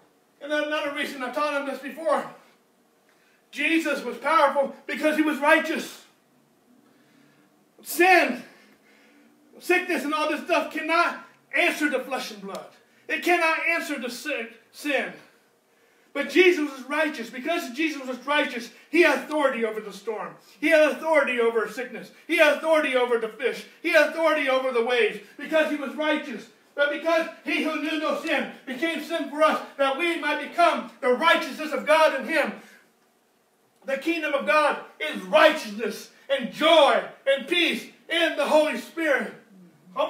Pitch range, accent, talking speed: 250-315 Hz, American, 155 wpm